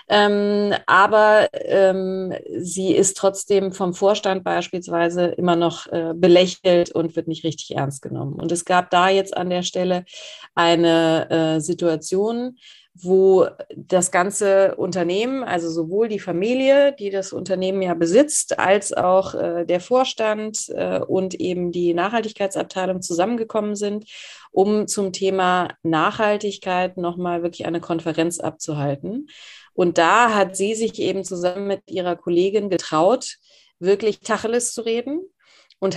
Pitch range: 175-210 Hz